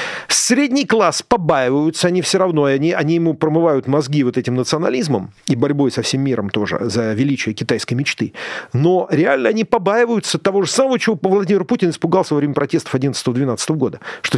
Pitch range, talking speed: 125-180 Hz, 170 wpm